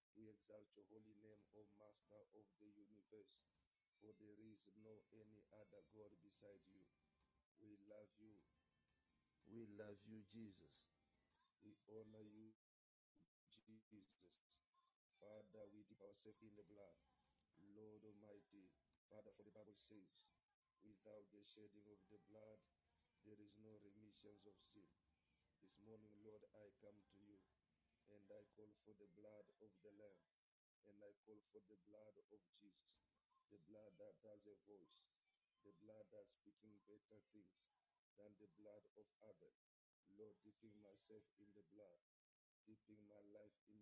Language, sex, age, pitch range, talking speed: English, male, 50-69, 100-110 Hz, 150 wpm